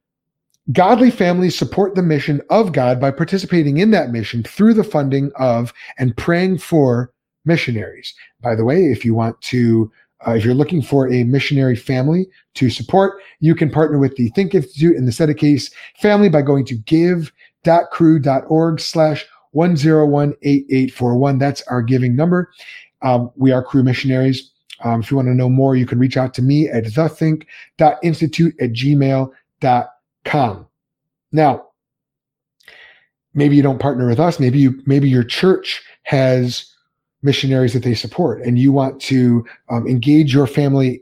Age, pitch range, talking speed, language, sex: 30-49, 125-160 Hz, 160 wpm, English, male